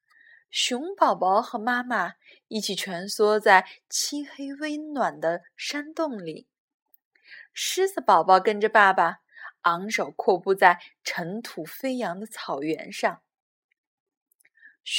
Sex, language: female, Chinese